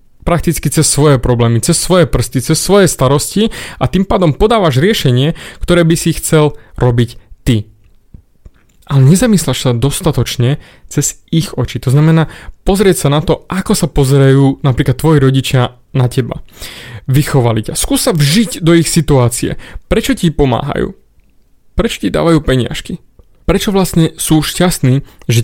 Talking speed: 145 wpm